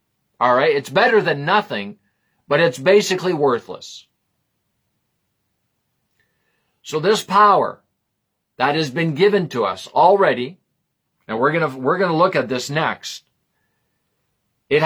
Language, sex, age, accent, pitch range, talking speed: English, male, 50-69, American, 155-205 Hz, 120 wpm